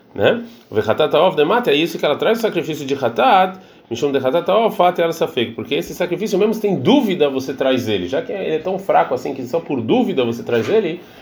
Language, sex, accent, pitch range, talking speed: Portuguese, male, Brazilian, 115-165 Hz, 205 wpm